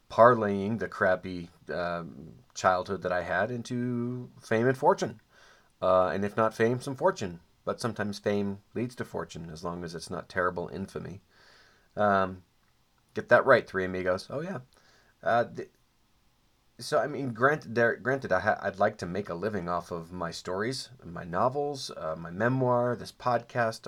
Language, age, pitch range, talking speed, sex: English, 30-49, 95-120 Hz, 170 wpm, male